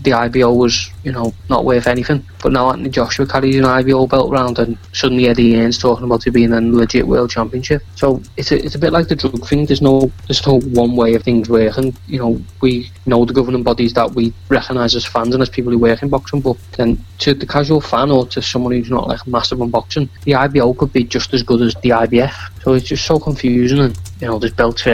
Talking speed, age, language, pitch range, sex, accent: 250 wpm, 20-39, English, 115-130 Hz, male, British